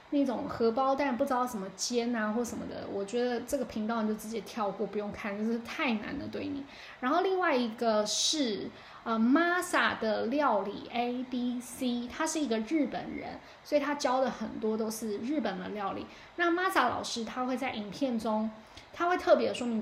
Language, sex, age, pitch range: Chinese, female, 10-29, 220-290 Hz